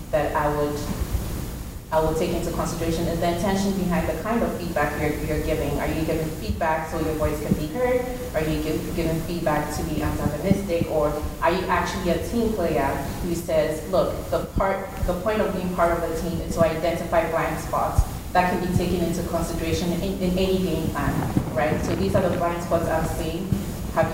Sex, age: female, 30-49